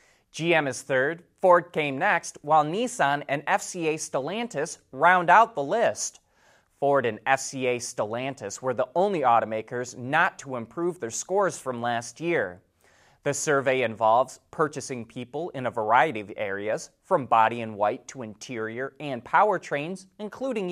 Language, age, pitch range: English, 30-49, 125-180 Hz